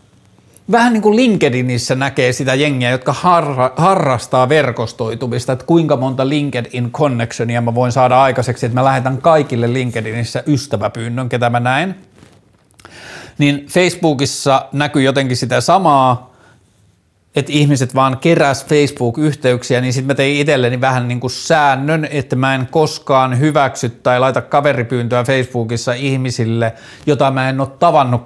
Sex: male